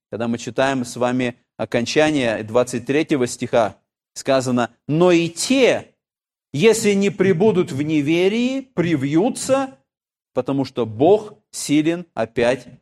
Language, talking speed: Russian, 110 wpm